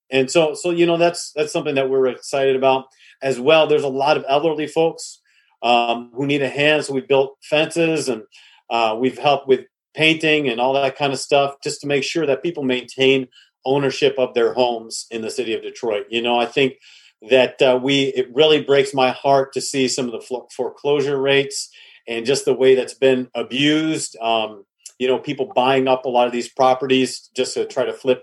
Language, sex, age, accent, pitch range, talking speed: English, male, 40-59, American, 125-150 Hz, 210 wpm